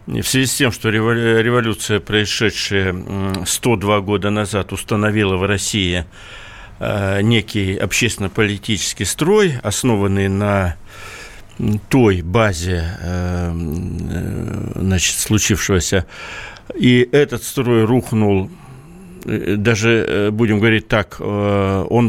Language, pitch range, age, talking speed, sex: Russian, 100-130 Hz, 60-79, 80 wpm, male